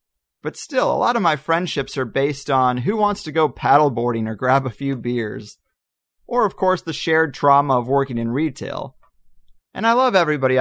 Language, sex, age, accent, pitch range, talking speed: English, male, 30-49, American, 130-175 Hz, 190 wpm